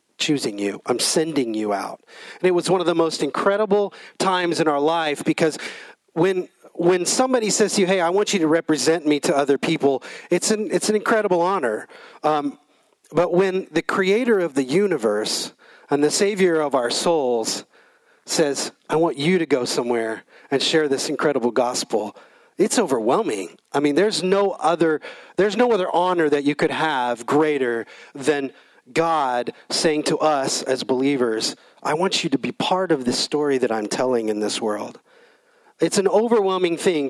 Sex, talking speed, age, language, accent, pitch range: male, 175 wpm, 40-59, English, American, 145-185 Hz